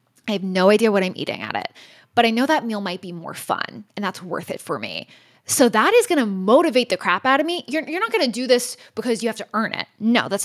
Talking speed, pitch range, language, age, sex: 285 wpm, 195-250 Hz, English, 20-39, female